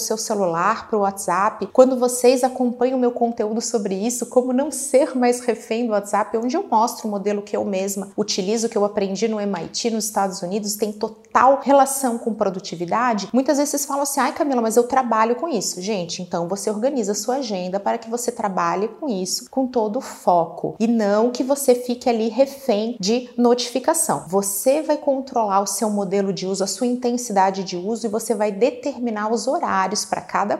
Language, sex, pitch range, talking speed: Portuguese, female, 205-255 Hz, 195 wpm